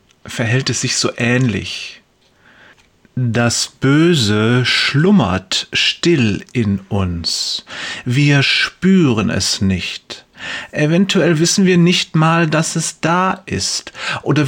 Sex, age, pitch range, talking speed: male, 30-49, 120-170 Hz, 105 wpm